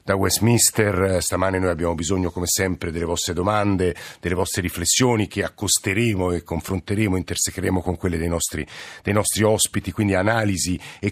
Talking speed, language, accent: 155 wpm, Italian, native